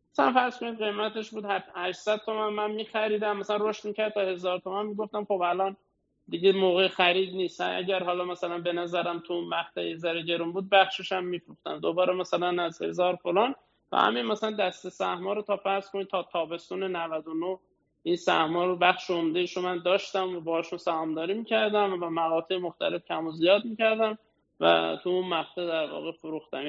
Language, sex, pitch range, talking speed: Persian, male, 180-220 Hz, 175 wpm